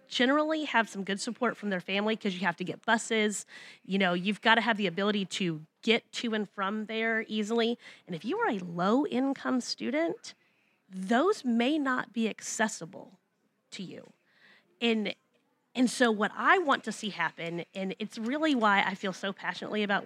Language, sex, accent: English, female, American